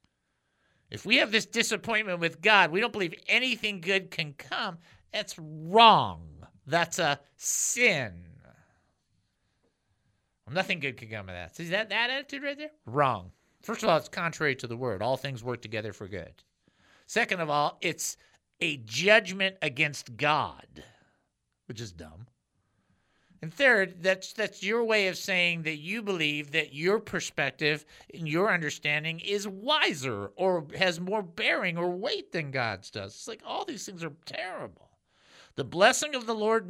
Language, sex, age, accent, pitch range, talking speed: English, male, 50-69, American, 135-195 Hz, 160 wpm